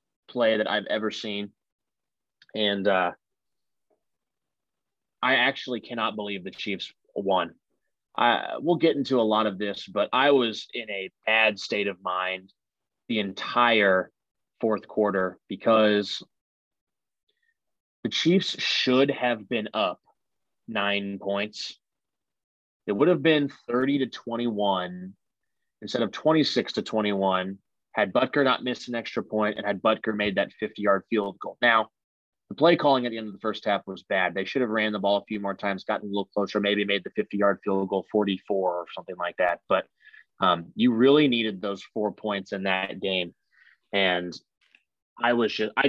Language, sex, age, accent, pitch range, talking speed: English, male, 30-49, American, 100-120 Hz, 165 wpm